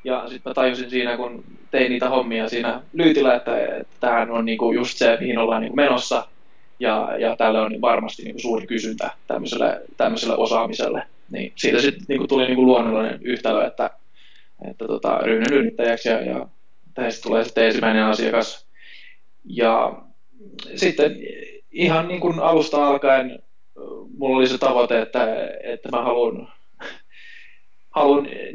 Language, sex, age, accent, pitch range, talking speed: Finnish, male, 20-39, native, 115-145 Hz, 140 wpm